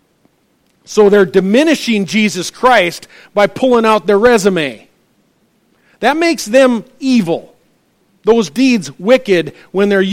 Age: 50-69